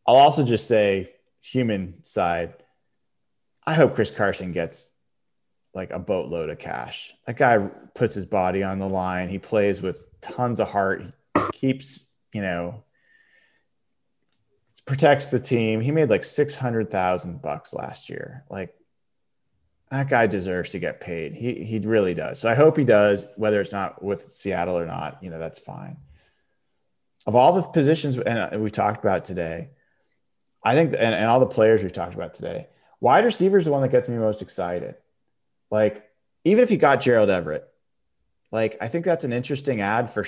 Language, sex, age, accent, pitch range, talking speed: English, male, 20-39, American, 95-135 Hz, 175 wpm